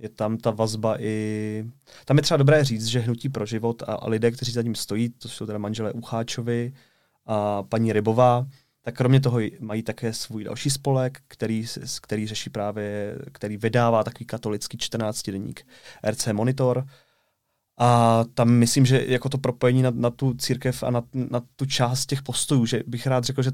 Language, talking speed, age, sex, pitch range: Czech, 180 wpm, 20-39, male, 110-130 Hz